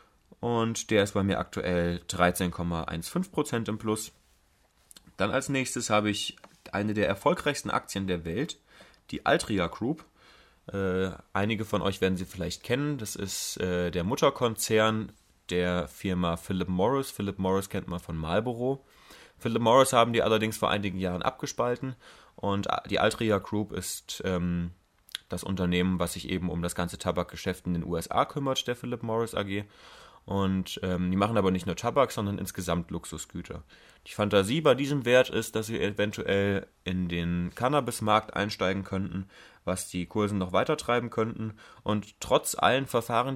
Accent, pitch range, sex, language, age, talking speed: German, 90-110 Hz, male, German, 30-49, 160 wpm